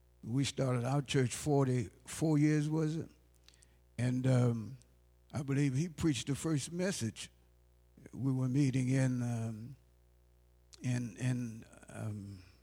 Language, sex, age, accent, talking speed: English, male, 60-79, American, 115 wpm